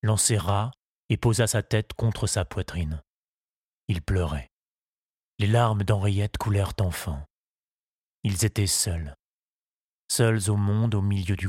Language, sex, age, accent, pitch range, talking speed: French, male, 30-49, French, 95-115 Hz, 125 wpm